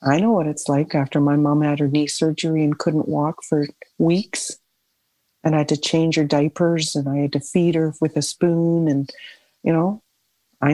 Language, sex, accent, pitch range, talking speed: English, female, American, 155-205 Hz, 205 wpm